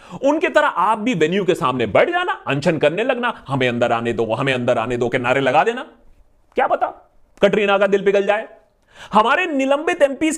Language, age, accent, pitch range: Hindi, 30-49, native, 165-275 Hz